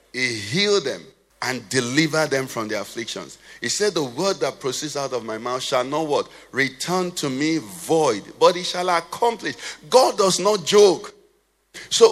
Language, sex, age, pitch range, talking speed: English, male, 50-69, 175-235 Hz, 175 wpm